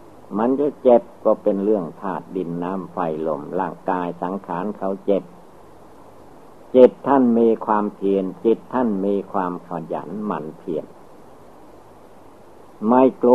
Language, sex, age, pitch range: Thai, male, 60-79, 100-120 Hz